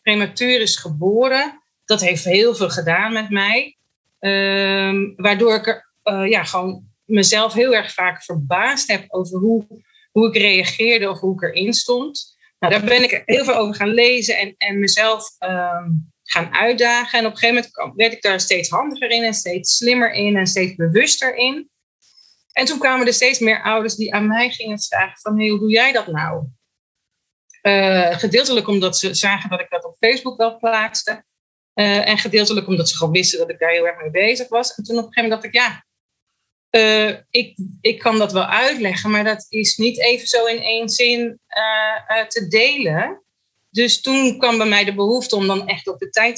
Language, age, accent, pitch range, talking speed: Dutch, 30-49, Dutch, 190-235 Hz, 200 wpm